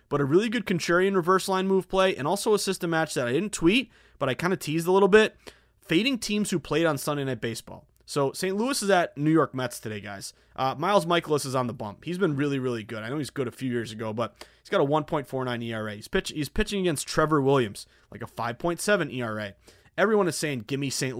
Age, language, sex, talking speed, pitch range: 20-39, English, male, 245 wpm, 125-180 Hz